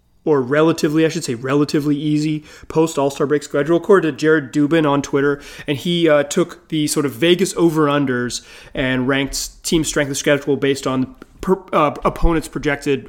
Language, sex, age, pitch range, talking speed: English, male, 30-49, 135-170 Hz, 170 wpm